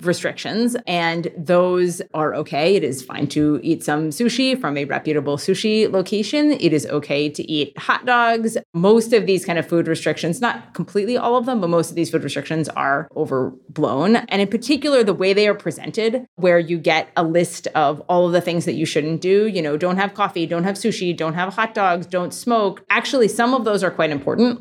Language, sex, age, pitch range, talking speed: English, female, 30-49, 160-210 Hz, 210 wpm